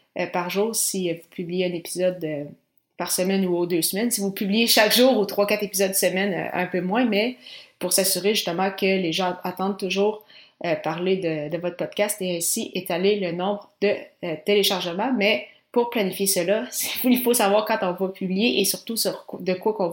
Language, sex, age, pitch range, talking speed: French, female, 30-49, 180-205 Hz, 215 wpm